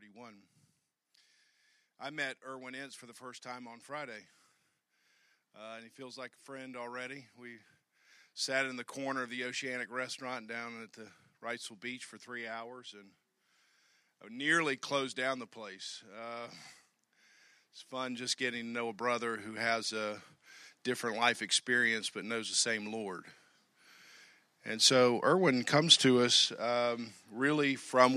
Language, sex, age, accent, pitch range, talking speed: English, male, 50-69, American, 115-130 Hz, 150 wpm